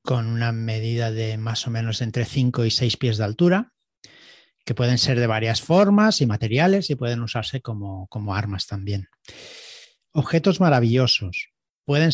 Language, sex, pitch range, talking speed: Spanish, male, 115-170 Hz, 160 wpm